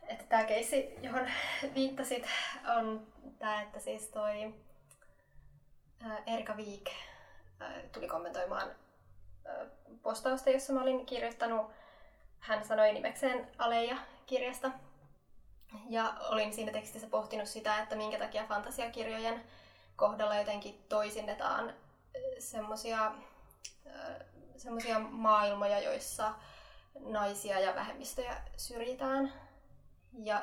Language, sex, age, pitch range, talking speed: Finnish, female, 20-39, 210-260 Hz, 85 wpm